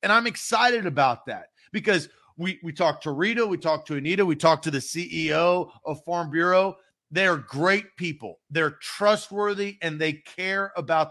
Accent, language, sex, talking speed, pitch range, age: American, English, male, 180 wpm, 155-205 Hz, 40-59